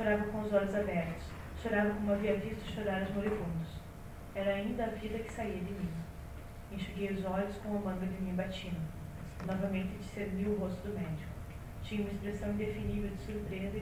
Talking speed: 180 wpm